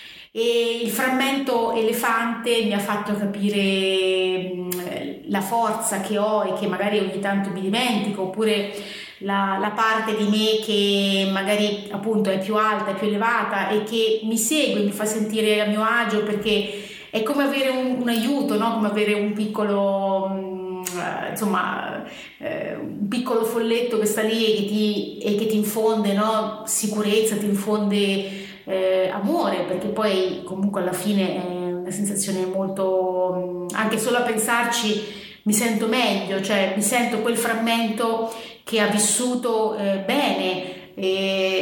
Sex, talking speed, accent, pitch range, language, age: female, 145 wpm, native, 195-230 Hz, Italian, 30-49